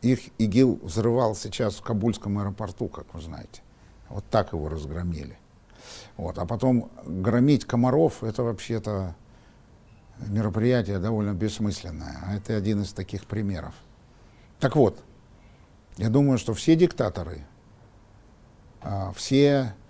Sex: male